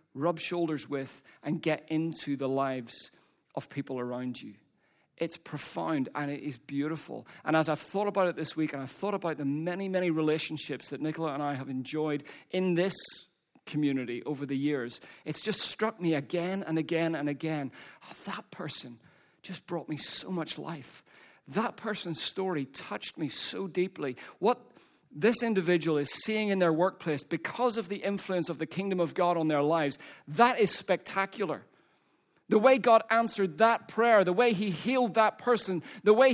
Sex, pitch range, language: male, 150-200 Hz, English